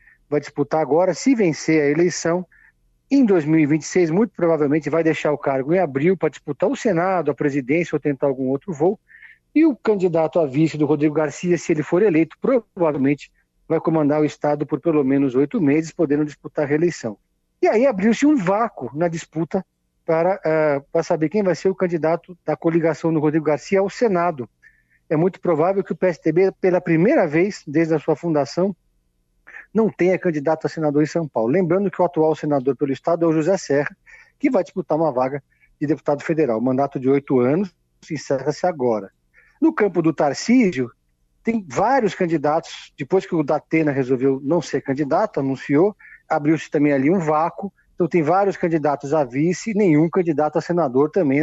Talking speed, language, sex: 180 wpm, Portuguese, male